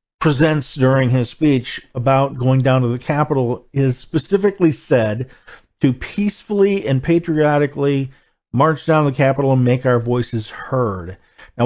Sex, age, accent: male, 40-59, American